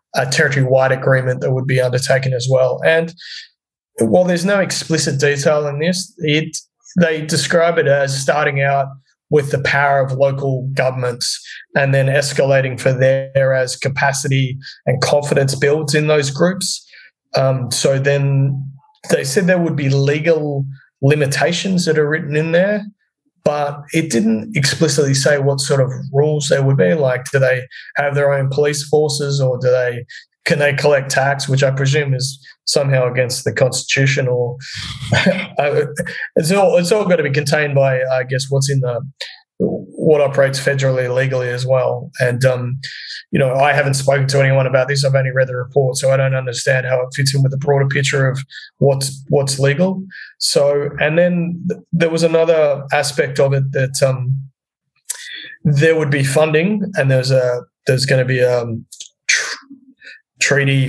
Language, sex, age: English, male, 20-39